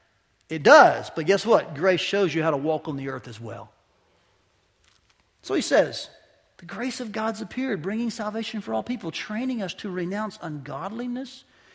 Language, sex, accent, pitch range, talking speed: English, male, American, 160-220 Hz, 175 wpm